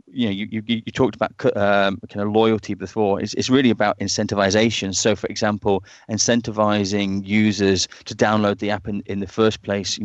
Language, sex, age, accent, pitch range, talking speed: English, male, 20-39, British, 100-110 Hz, 190 wpm